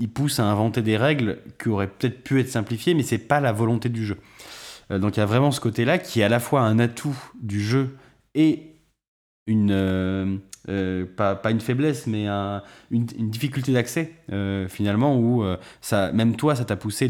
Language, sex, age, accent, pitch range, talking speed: French, male, 20-39, French, 100-130 Hz, 215 wpm